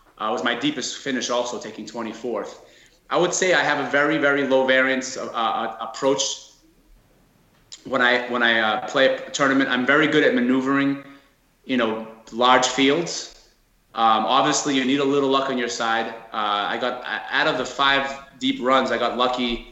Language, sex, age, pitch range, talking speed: French, male, 30-49, 115-140 Hz, 185 wpm